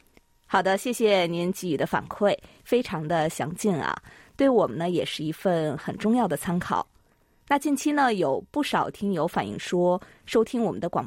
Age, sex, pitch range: 20-39, female, 175-225 Hz